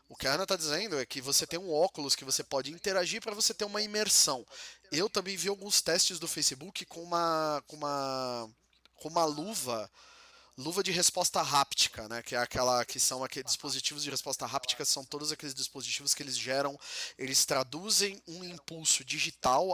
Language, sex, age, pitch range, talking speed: Portuguese, male, 20-39, 140-190 Hz, 190 wpm